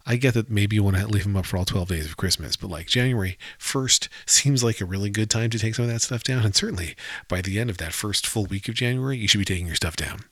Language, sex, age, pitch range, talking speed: English, male, 40-59, 95-120 Hz, 300 wpm